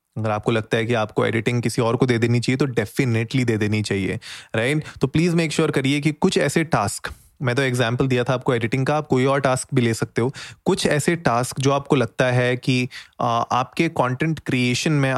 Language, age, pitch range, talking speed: Hindi, 30-49, 115-140 Hz, 225 wpm